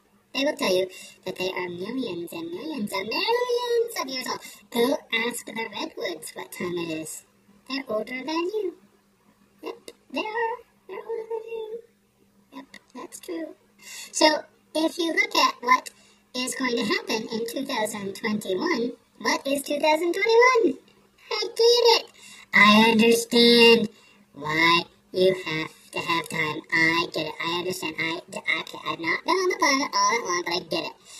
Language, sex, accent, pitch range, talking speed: English, male, American, 205-320 Hz, 160 wpm